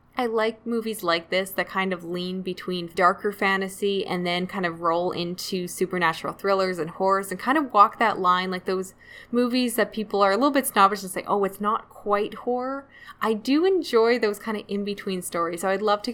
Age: 10-29